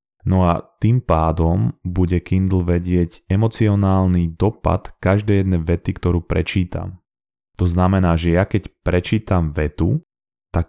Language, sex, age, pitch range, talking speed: Slovak, male, 20-39, 85-95 Hz, 125 wpm